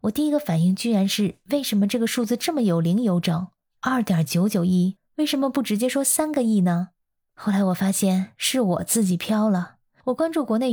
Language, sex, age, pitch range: Chinese, female, 20-39, 185-235 Hz